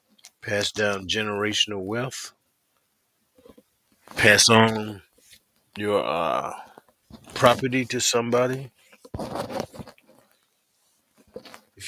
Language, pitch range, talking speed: English, 100-130 Hz, 60 wpm